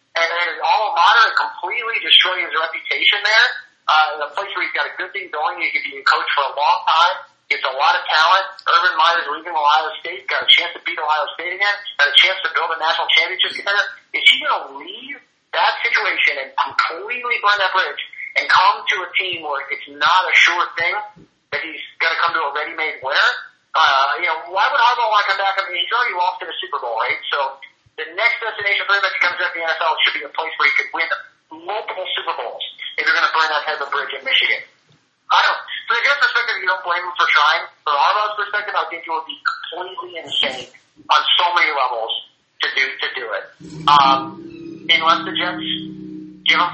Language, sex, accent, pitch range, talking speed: English, male, American, 160-210 Hz, 225 wpm